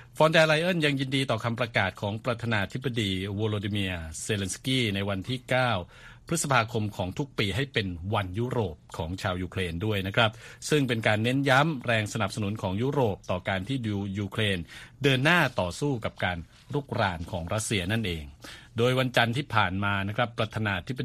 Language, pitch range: Thai, 95-125 Hz